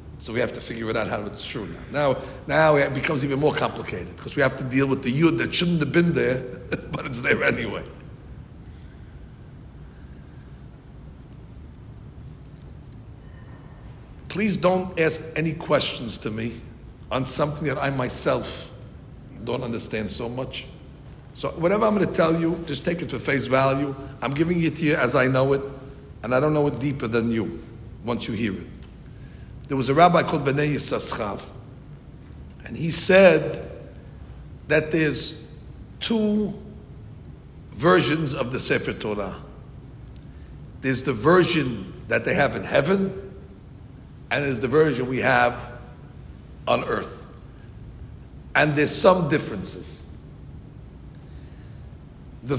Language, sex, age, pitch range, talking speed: English, male, 60-79, 120-160 Hz, 140 wpm